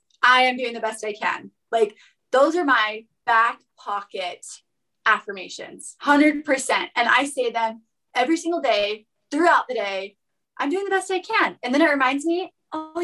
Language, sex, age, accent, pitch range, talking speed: English, female, 20-39, American, 230-310 Hz, 170 wpm